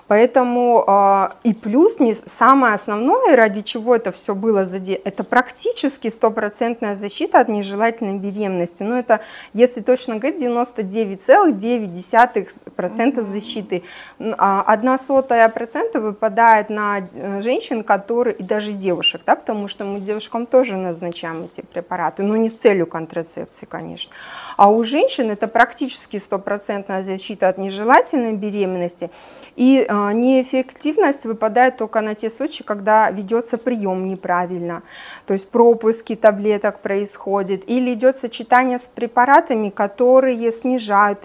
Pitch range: 205-255 Hz